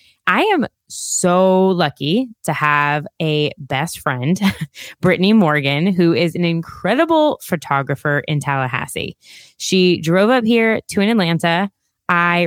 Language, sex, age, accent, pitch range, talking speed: English, female, 20-39, American, 155-195 Hz, 120 wpm